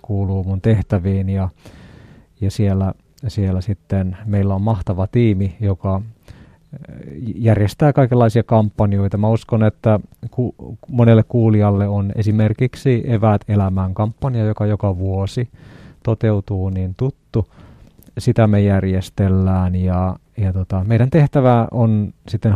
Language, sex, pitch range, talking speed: Finnish, male, 100-115 Hz, 115 wpm